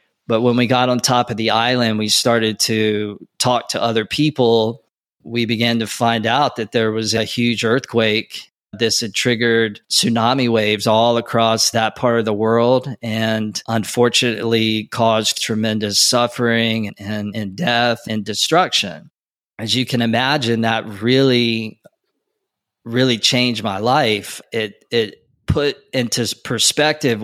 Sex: male